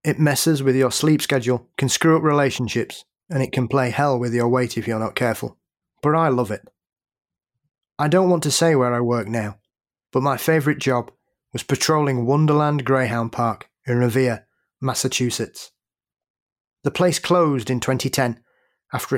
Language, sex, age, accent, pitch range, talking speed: English, male, 30-49, British, 125-150 Hz, 165 wpm